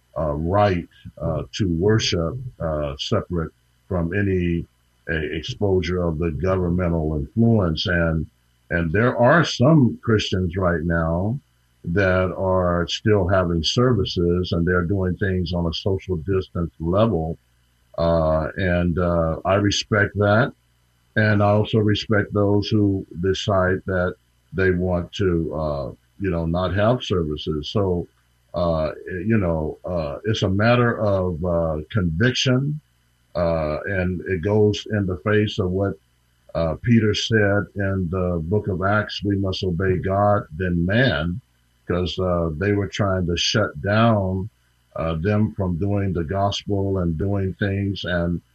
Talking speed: 140 wpm